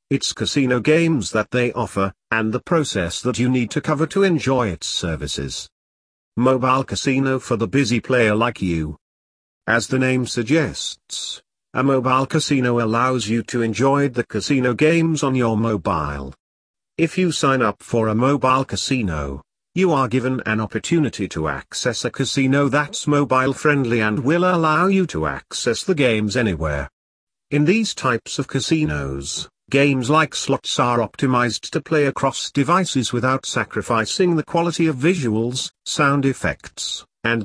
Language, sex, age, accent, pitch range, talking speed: English, male, 40-59, British, 110-145 Hz, 150 wpm